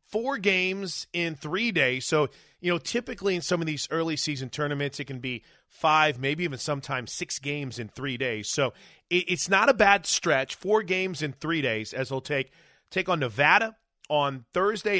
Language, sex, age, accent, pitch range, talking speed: English, male, 30-49, American, 135-175 Hz, 190 wpm